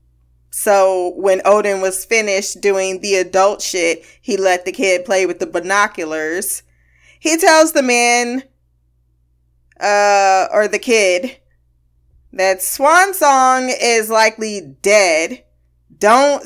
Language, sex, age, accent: English, female, 20-39, American